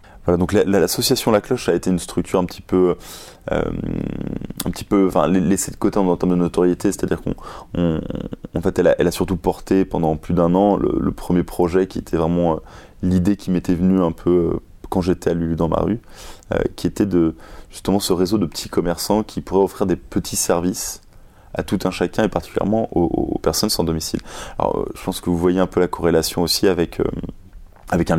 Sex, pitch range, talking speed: male, 85-100 Hz, 210 wpm